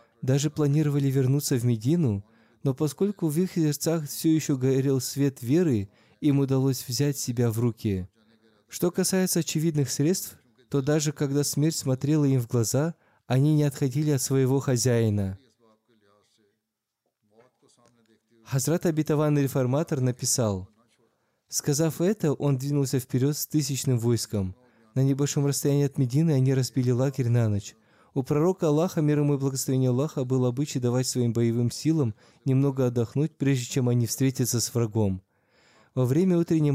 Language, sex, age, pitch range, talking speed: Russian, male, 20-39, 120-145 Hz, 140 wpm